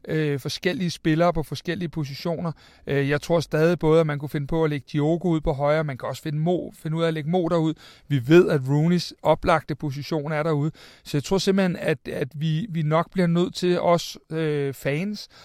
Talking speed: 220 wpm